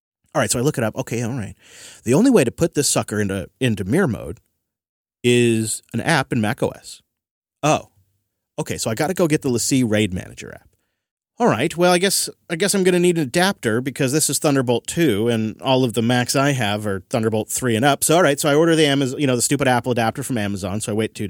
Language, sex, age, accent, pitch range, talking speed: English, male, 30-49, American, 110-155 Hz, 255 wpm